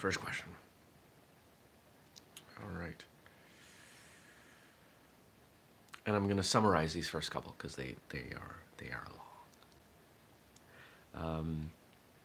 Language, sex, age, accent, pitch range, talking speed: English, male, 30-49, American, 75-90 Hz, 100 wpm